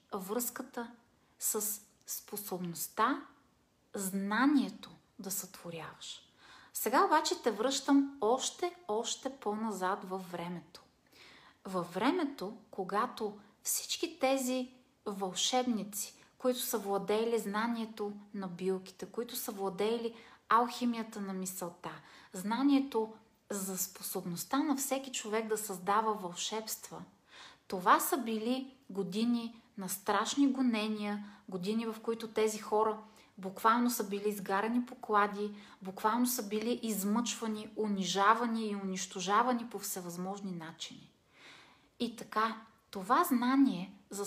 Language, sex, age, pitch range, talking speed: Bulgarian, female, 30-49, 200-245 Hz, 100 wpm